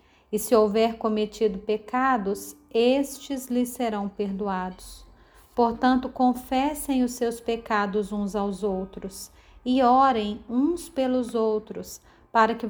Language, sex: Portuguese, female